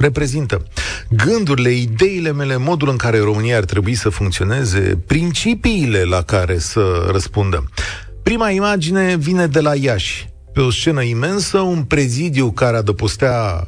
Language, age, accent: Romanian, 40-59, native